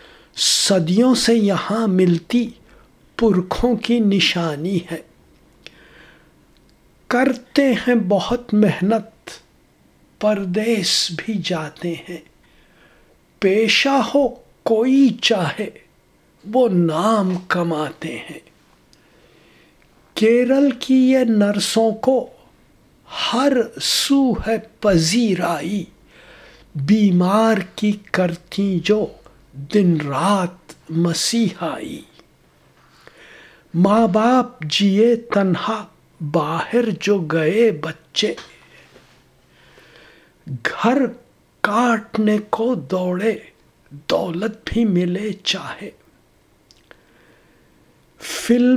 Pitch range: 180-235 Hz